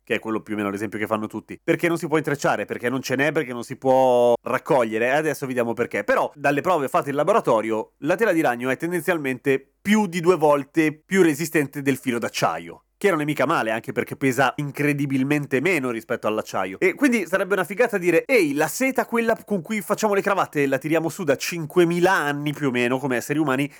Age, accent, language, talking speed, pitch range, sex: 30-49, native, Italian, 225 wpm, 125-170 Hz, male